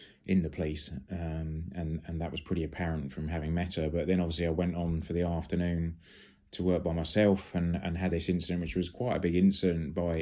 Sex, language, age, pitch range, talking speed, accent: male, English, 30-49, 80-90 Hz, 230 wpm, British